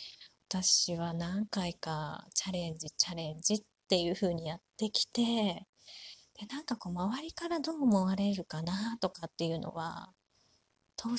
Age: 30-49